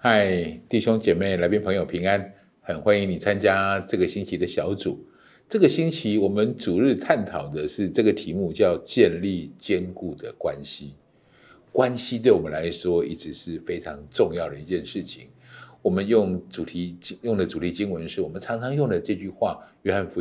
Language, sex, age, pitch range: Chinese, male, 50-69, 95-140 Hz